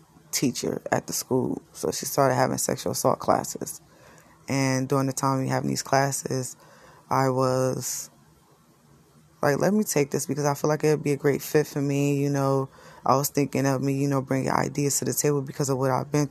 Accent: American